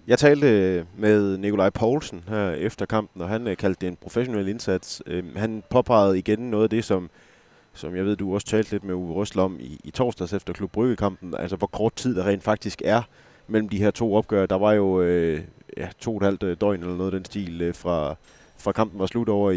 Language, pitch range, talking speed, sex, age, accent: Danish, 90-105 Hz, 220 wpm, male, 30-49, native